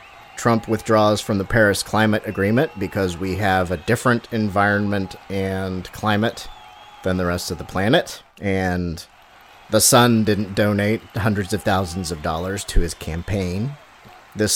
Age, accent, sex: 30-49, American, male